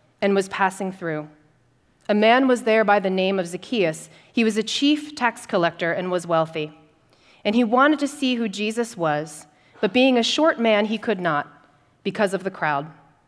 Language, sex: English, female